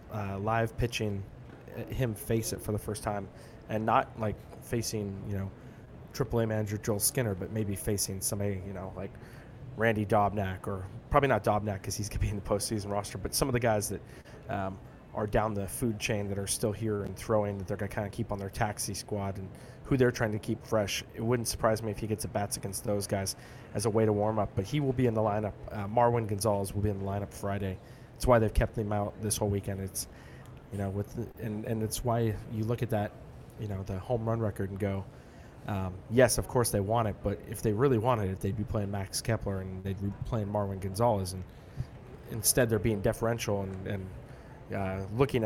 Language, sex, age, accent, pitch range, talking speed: English, male, 20-39, American, 100-115 Hz, 235 wpm